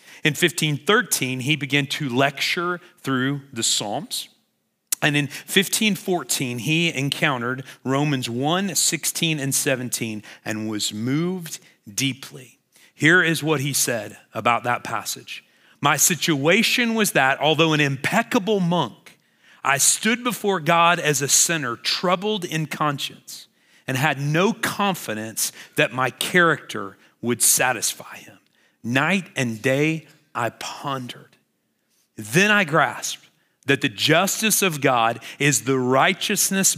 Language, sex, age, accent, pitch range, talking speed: English, male, 40-59, American, 125-170 Hz, 120 wpm